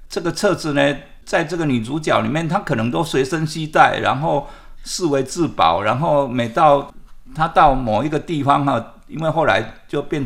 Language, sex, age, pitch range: Chinese, male, 50-69, 130-165 Hz